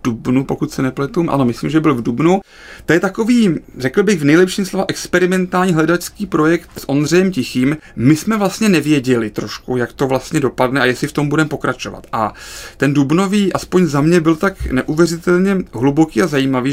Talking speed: 185 wpm